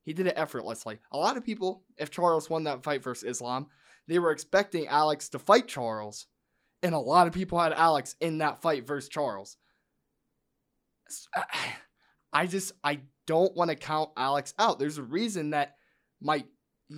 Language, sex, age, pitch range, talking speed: English, male, 20-39, 130-165 Hz, 170 wpm